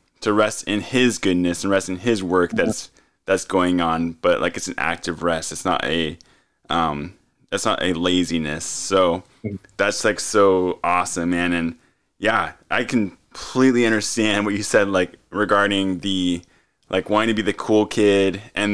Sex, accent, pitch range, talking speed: male, American, 90-110 Hz, 165 wpm